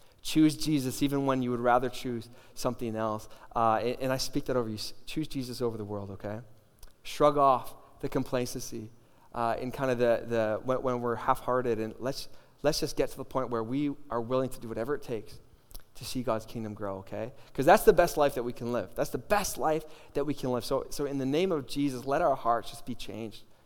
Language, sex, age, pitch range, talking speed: English, male, 20-39, 115-145 Hz, 230 wpm